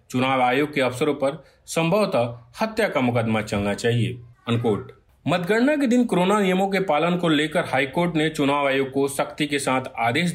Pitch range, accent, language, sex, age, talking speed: 120-165 Hz, native, Hindi, male, 40-59, 175 wpm